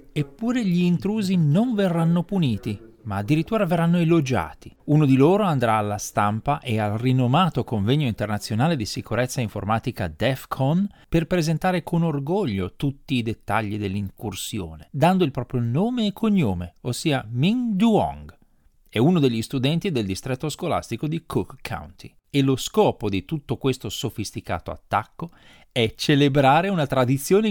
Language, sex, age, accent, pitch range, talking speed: Italian, male, 40-59, native, 110-165 Hz, 140 wpm